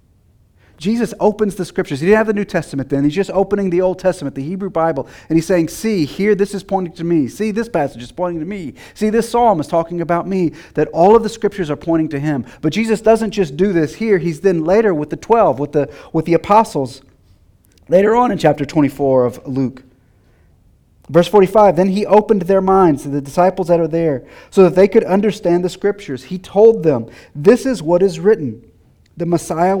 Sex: male